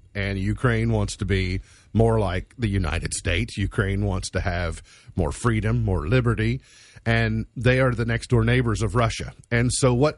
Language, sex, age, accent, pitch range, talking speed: English, male, 40-59, American, 100-135 Hz, 170 wpm